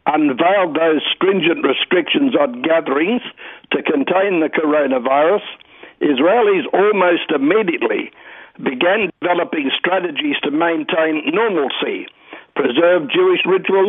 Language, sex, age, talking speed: English, male, 60-79, 95 wpm